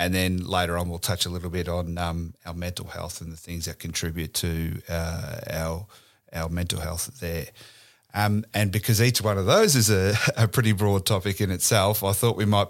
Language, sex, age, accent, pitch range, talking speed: English, male, 30-49, Australian, 90-105 Hz, 215 wpm